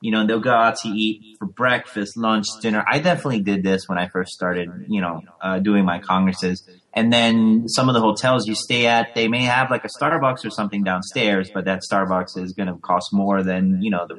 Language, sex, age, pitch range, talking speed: English, male, 30-49, 95-115 Hz, 235 wpm